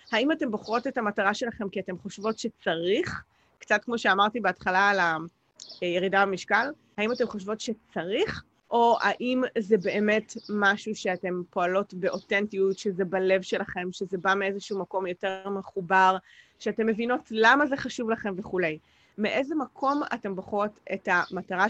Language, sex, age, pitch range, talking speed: English, female, 30-49, 195-250 Hz, 140 wpm